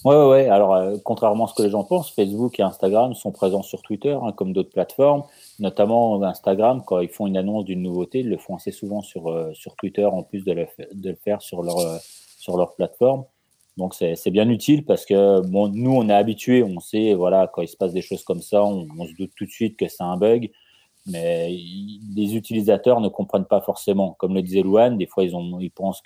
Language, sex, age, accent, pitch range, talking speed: French, male, 30-49, French, 90-110 Hz, 245 wpm